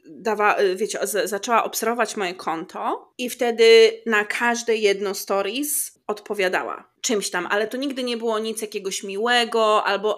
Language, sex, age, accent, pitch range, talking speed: Polish, female, 20-39, native, 205-250 Hz, 145 wpm